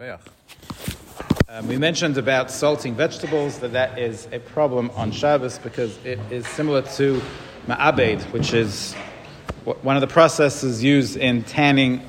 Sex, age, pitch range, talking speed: male, 40-59, 125-155 Hz, 140 wpm